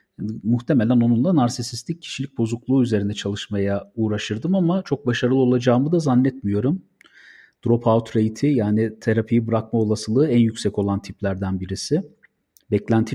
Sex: male